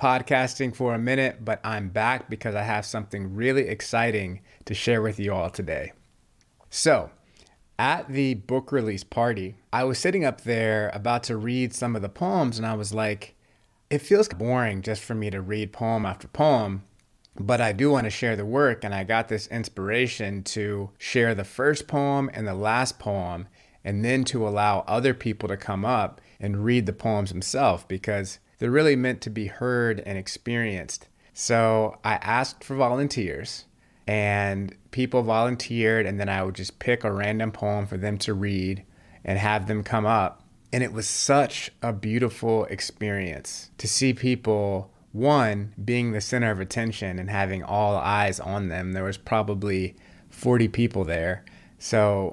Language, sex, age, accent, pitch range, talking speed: English, male, 30-49, American, 100-120 Hz, 175 wpm